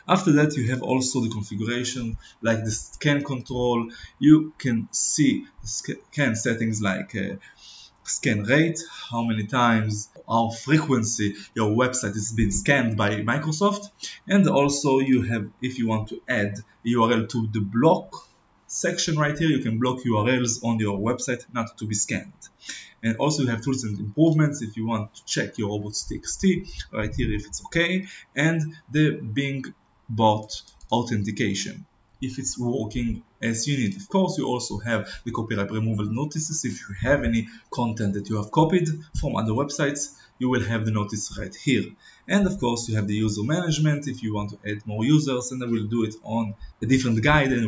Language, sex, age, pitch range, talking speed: Hebrew, male, 20-39, 110-145 Hz, 180 wpm